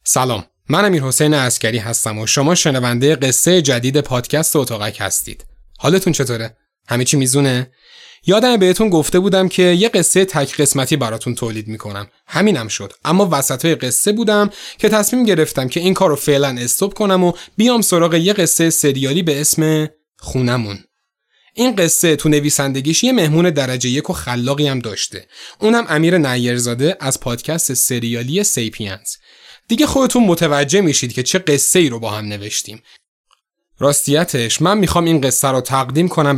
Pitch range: 125-170 Hz